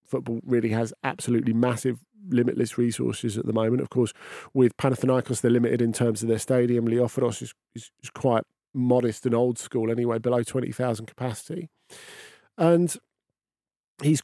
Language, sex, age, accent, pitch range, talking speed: English, male, 40-59, British, 115-140 Hz, 150 wpm